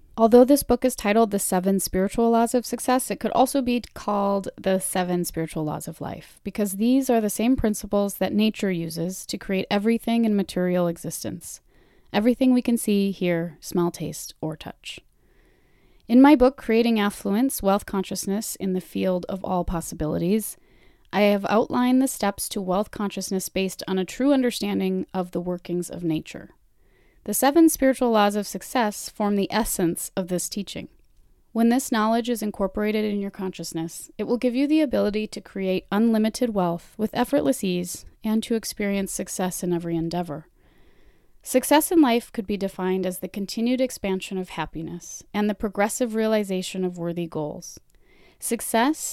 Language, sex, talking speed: English, female, 165 wpm